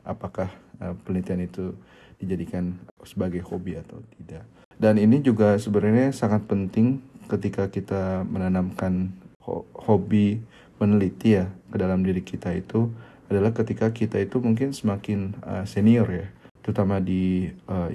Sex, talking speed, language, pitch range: male, 125 wpm, Indonesian, 90-105 Hz